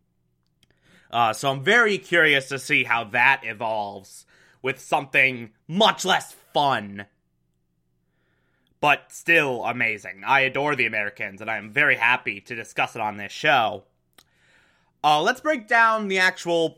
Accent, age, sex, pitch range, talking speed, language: American, 20-39, male, 105-170 Hz, 135 wpm, English